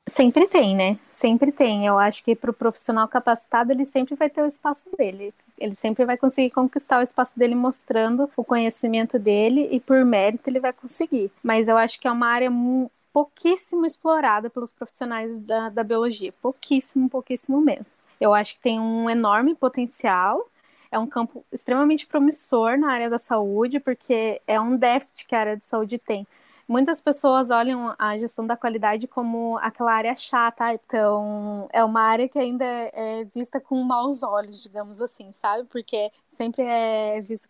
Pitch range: 225-265 Hz